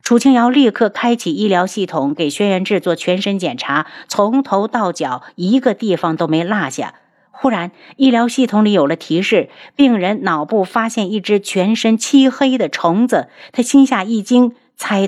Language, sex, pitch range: Chinese, female, 175-245 Hz